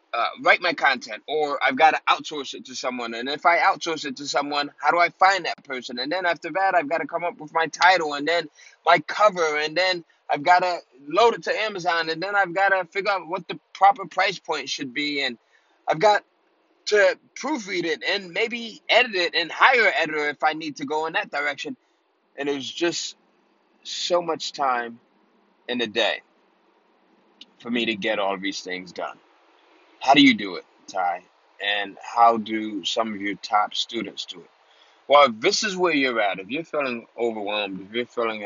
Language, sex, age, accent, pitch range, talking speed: English, male, 20-39, American, 115-185 Hz, 210 wpm